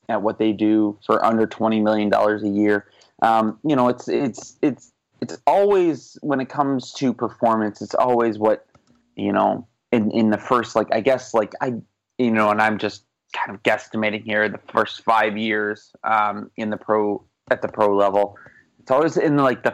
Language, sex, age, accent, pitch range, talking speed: English, male, 30-49, American, 105-115 Hz, 195 wpm